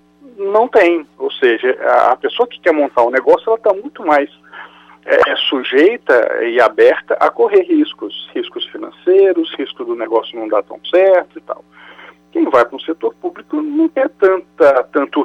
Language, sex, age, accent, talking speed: Portuguese, male, 50-69, Brazilian, 155 wpm